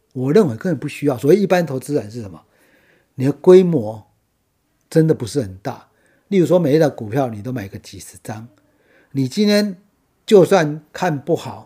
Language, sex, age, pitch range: Chinese, male, 50-69, 115-160 Hz